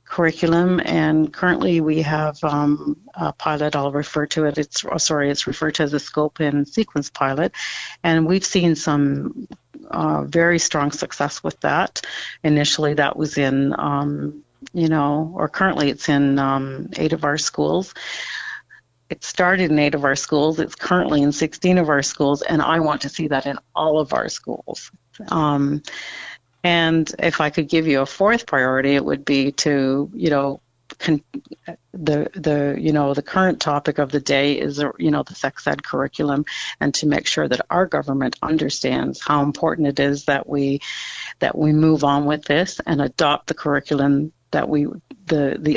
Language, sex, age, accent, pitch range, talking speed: English, female, 50-69, American, 140-160 Hz, 180 wpm